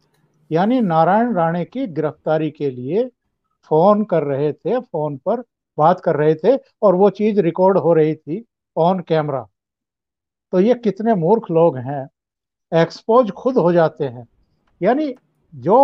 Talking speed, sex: 150 wpm, male